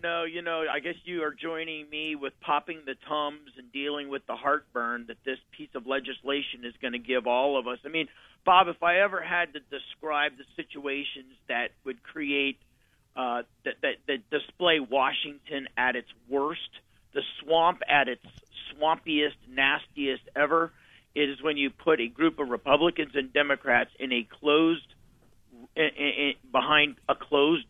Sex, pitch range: male, 130-155 Hz